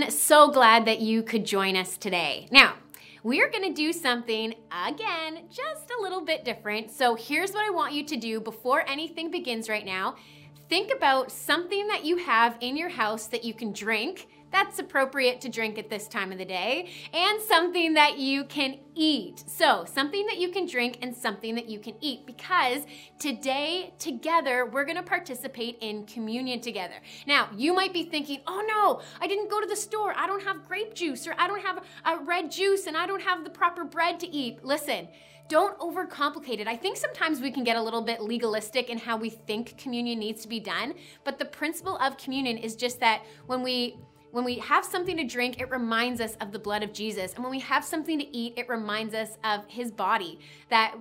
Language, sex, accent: Japanese, female, American